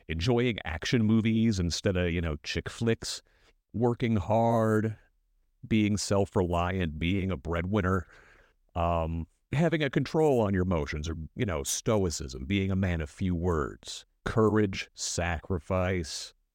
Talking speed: 125 wpm